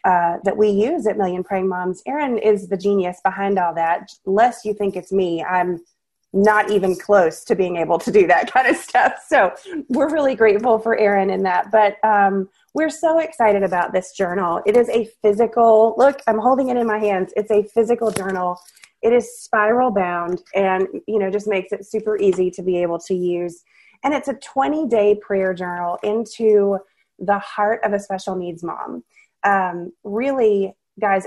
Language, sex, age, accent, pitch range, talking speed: English, female, 20-39, American, 190-230 Hz, 190 wpm